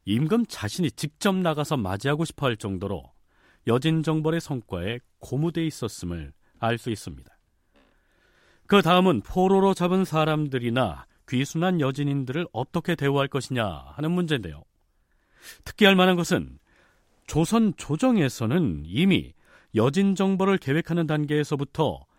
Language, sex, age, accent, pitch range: Korean, male, 40-59, native, 105-165 Hz